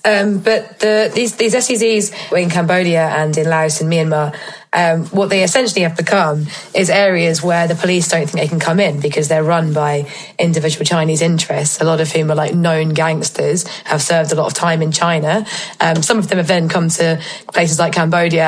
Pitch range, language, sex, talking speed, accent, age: 160-195 Hz, English, female, 210 wpm, British, 20-39